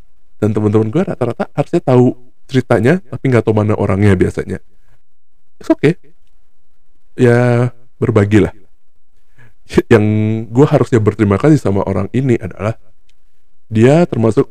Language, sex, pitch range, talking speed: Indonesian, male, 95-120 Hz, 115 wpm